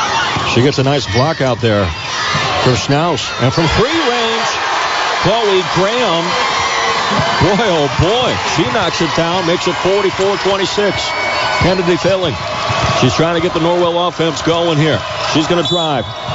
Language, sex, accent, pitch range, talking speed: English, male, American, 135-165 Hz, 145 wpm